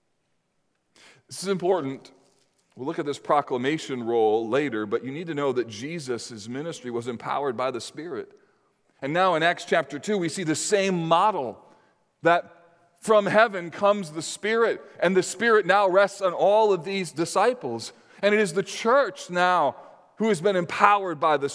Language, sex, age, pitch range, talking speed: English, male, 40-59, 140-200 Hz, 175 wpm